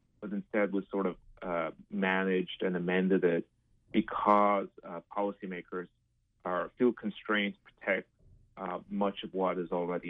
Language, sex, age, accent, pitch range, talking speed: English, male, 30-49, American, 90-105 Hz, 145 wpm